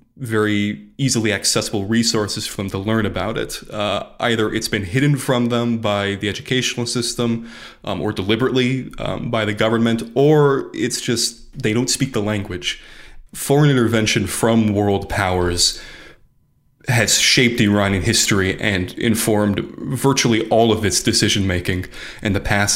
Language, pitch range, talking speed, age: English, 100-120 Hz, 145 wpm, 20-39